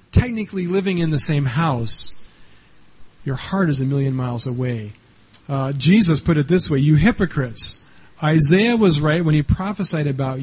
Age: 40-59